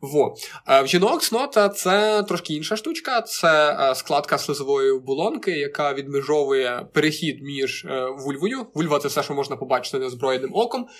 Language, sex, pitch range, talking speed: Ukrainian, male, 145-205 Hz, 140 wpm